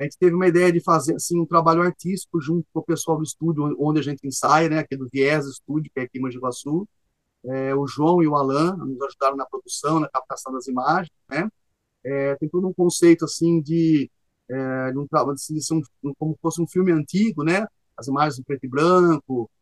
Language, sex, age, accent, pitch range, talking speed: Portuguese, male, 30-49, Brazilian, 145-185 Hz, 225 wpm